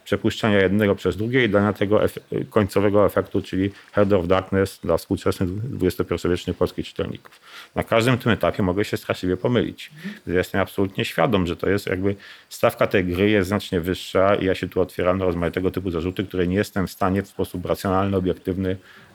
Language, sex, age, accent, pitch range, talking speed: Polish, male, 50-69, native, 90-105 Hz, 180 wpm